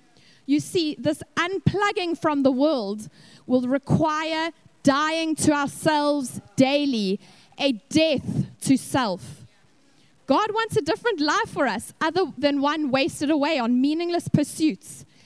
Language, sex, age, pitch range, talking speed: English, female, 10-29, 255-315 Hz, 125 wpm